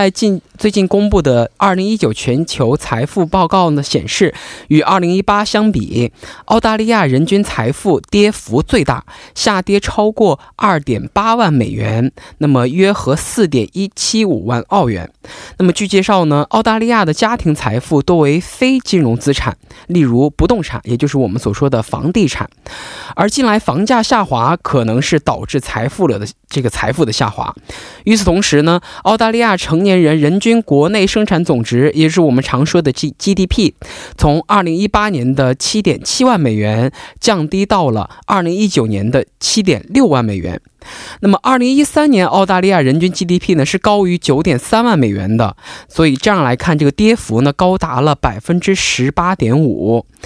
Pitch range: 135-205 Hz